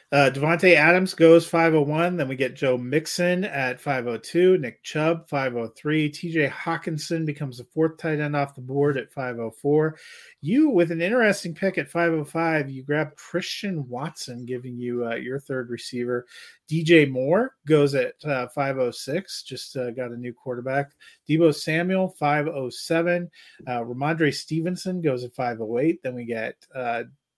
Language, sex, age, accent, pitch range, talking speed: English, male, 30-49, American, 130-170 Hz, 150 wpm